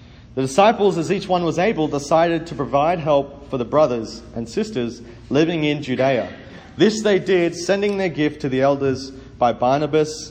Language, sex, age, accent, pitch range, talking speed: English, male, 40-59, Australian, 125-185 Hz, 175 wpm